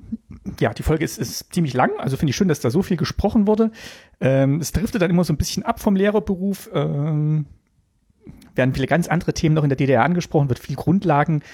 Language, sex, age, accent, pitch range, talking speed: German, male, 40-59, German, 125-165 Hz, 220 wpm